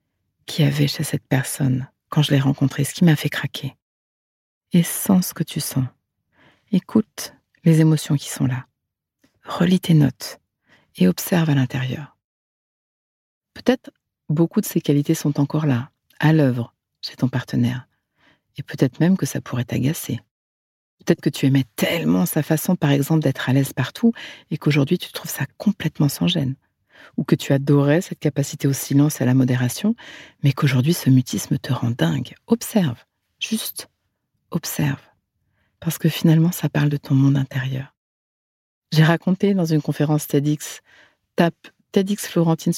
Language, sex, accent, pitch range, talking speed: French, female, French, 135-170 Hz, 160 wpm